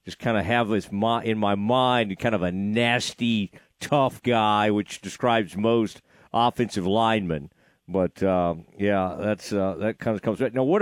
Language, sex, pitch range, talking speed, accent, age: English, male, 120-160 Hz, 170 wpm, American, 50-69